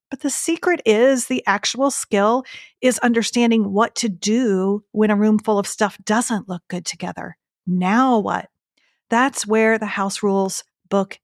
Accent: American